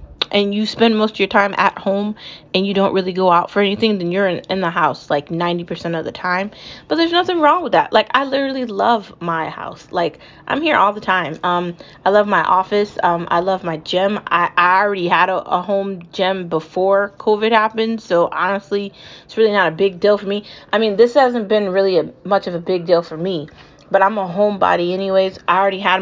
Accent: American